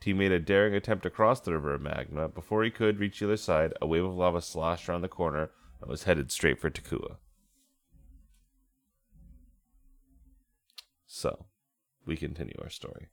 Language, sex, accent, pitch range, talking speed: English, male, American, 80-100 Hz, 170 wpm